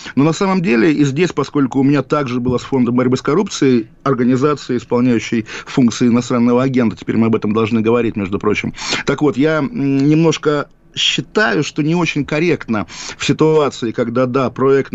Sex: male